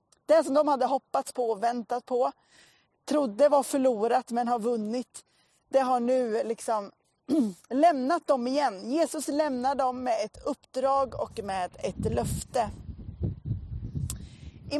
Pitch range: 225-295 Hz